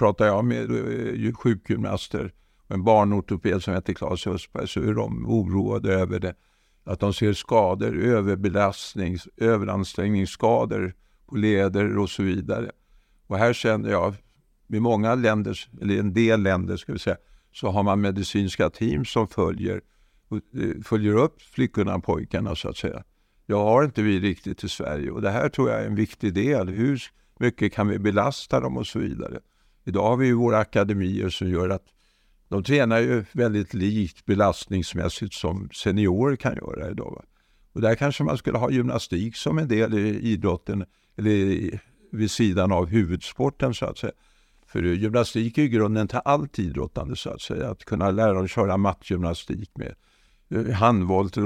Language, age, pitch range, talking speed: Swedish, 60-79, 95-110 Hz, 165 wpm